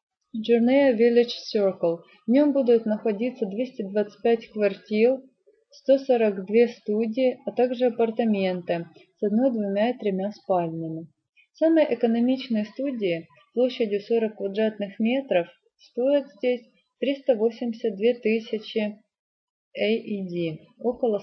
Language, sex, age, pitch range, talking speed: Russian, female, 30-49, 195-250 Hz, 105 wpm